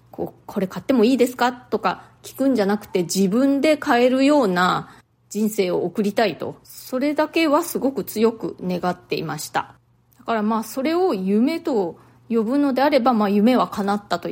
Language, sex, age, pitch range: Japanese, female, 20-39, 180-255 Hz